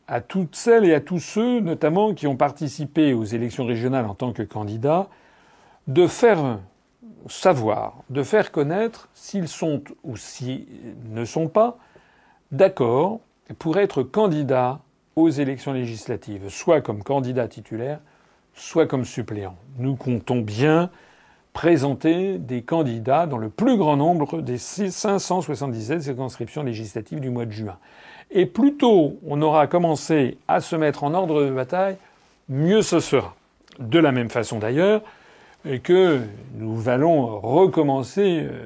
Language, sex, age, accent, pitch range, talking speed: French, male, 50-69, French, 120-170 Hz, 140 wpm